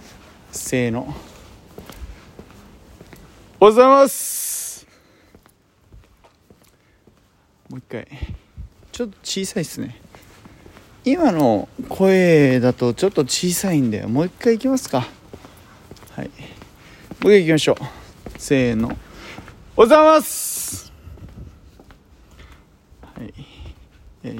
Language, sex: Japanese, male